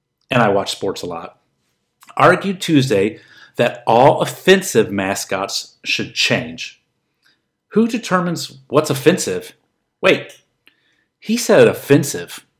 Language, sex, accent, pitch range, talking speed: English, male, American, 120-155 Hz, 105 wpm